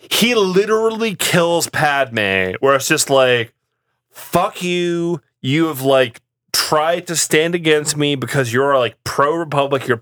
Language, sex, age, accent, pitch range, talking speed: English, male, 30-49, American, 125-170 Hz, 140 wpm